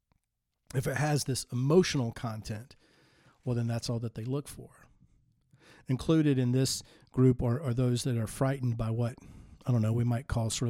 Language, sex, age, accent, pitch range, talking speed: English, male, 50-69, American, 120-140 Hz, 185 wpm